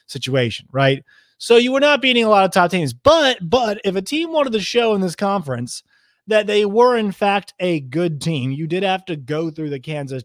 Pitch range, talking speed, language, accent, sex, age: 140-200 Hz, 230 wpm, English, American, male, 30-49